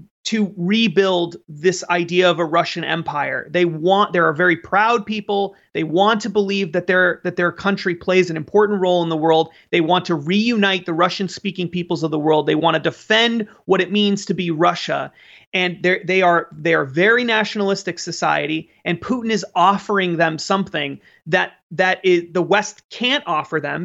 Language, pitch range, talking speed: English, 175-210 Hz, 180 wpm